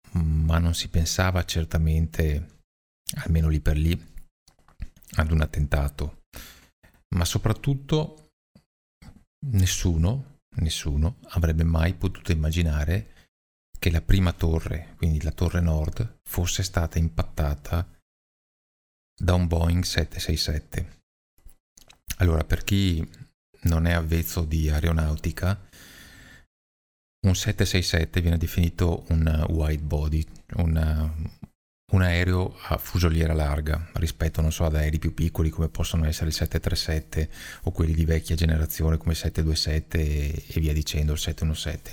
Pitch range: 80-90 Hz